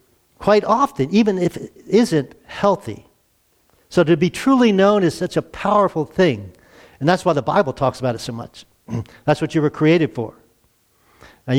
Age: 50-69